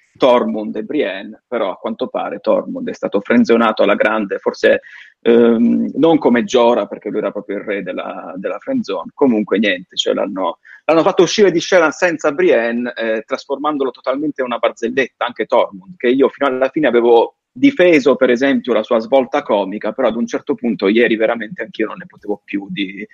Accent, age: native, 30-49